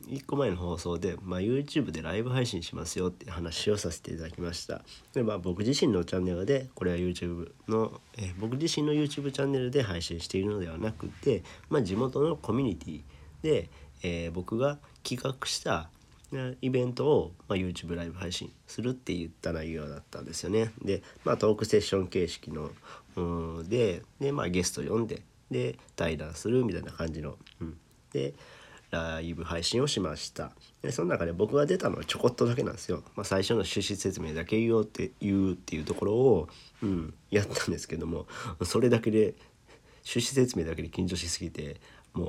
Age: 40-59